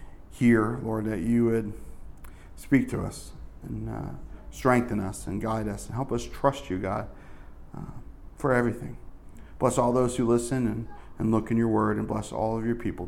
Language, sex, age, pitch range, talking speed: English, male, 40-59, 100-125 Hz, 190 wpm